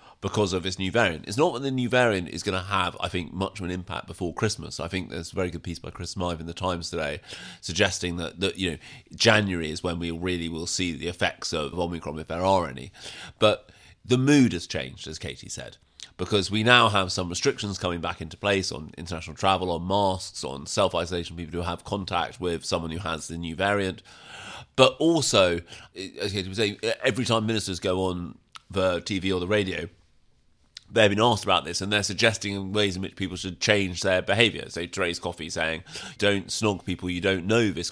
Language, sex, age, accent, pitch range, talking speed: English, male, 30-49, British, 85-110 Hz, 215 wpm